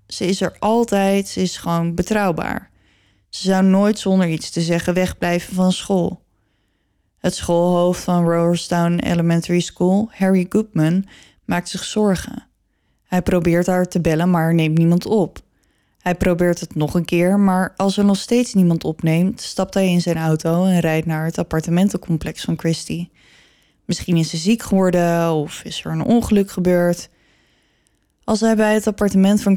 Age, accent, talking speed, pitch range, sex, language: 20-39, Dutch, 160 wpm, 170-195 Hz, female, Dutch